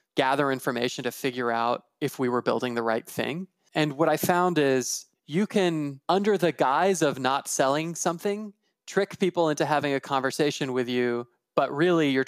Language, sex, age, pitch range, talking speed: English, male, 20-39, 125-155 Hz, 180 wpm